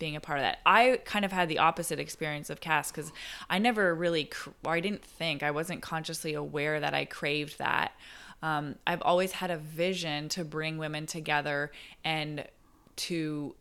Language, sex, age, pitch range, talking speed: English, female, 20-39, 150-170 Hz, 180 wpm